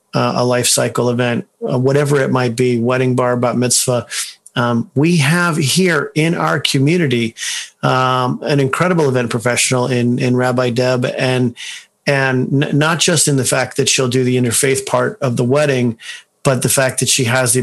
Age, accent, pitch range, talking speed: 40-59, American, 125-140 Hz, 175 wpm